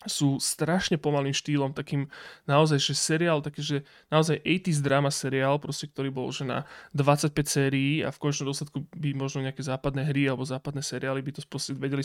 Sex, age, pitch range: male, 20-39, 140-155 Hz